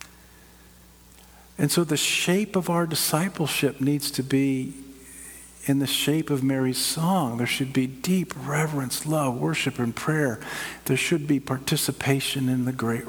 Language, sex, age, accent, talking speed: English, male, 50-69, American, 145 wpm